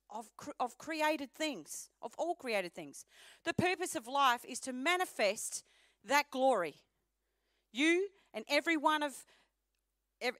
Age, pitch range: 40-59, 240-330 Hz